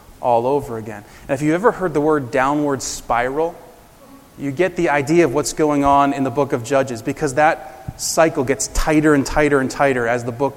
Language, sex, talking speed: English, male, 210 wpm